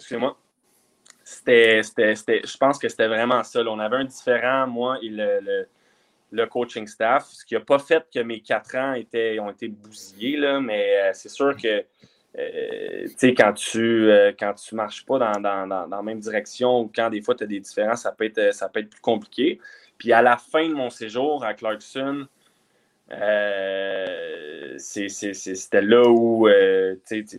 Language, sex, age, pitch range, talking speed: French, male, 20-39, 110-150 Hz, 185 wpm